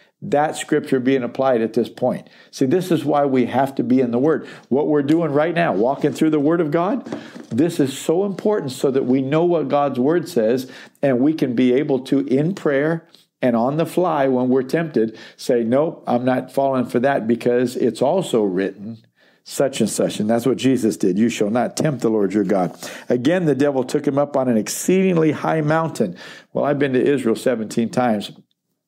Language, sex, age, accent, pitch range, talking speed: English, male, 50-69, American, 120-155 Hz, 210 wpm